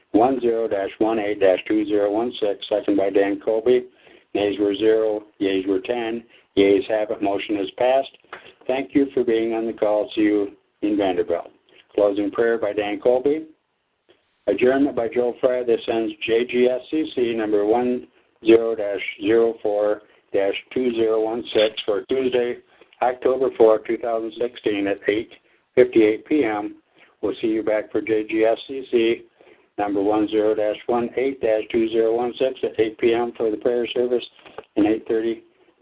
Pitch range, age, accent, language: 105-125 Hz, 60-79, American, English